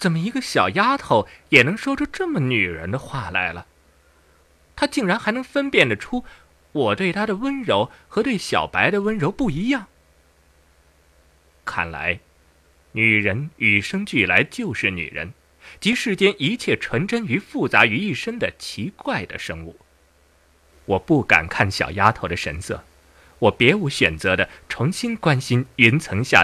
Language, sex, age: Chinese, male, 30-49